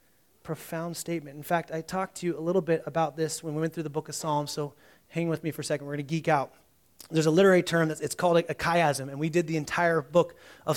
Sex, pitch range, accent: male, 160-200 Hz, American